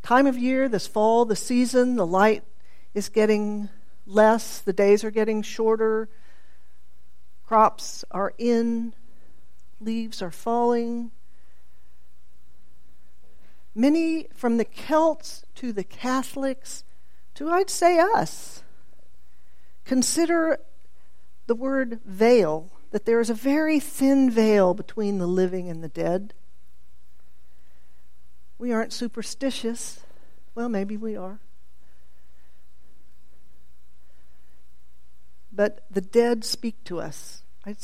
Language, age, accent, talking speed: English, 50-69, American, 105 wpm